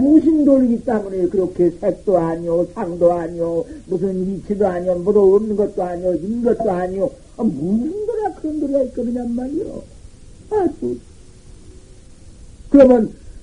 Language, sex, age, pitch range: Korean, male, 50-69, 190-280 Hz